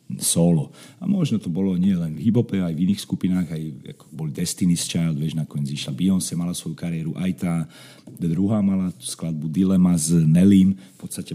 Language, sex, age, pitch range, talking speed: Slovak, male, 40-59, 90-115 Hz, 185 wpm